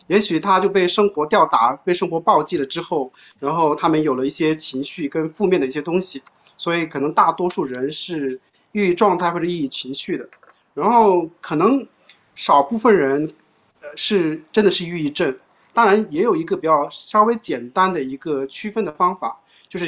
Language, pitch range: Chinese, 155-200 Hz